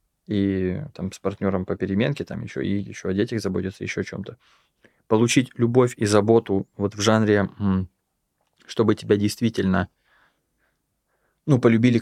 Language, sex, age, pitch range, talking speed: Russian, male, 20-39, 95-115 Hz, 140 wpm